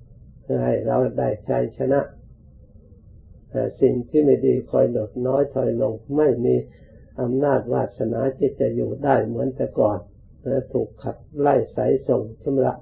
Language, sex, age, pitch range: Thai, male, 60-79, 100-130 Hz